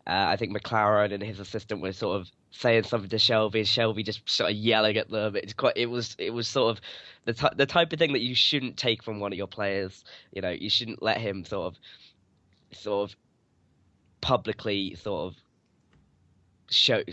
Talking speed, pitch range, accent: 205 wpm, 100-115 Hz, British